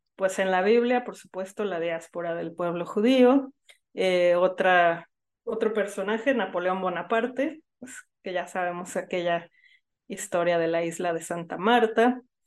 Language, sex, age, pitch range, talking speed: Spanish, female, 30-49, 180-220 Hz, 140 wpm